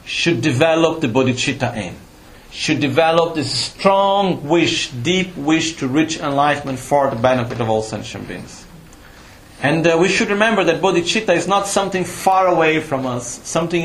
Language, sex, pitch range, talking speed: Italian, male, 120-170 Hz, 160 wpm